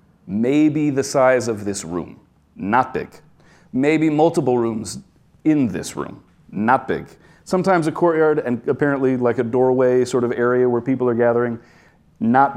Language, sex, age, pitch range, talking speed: English, male, 30-49, 115-145 Hz, 155 wpm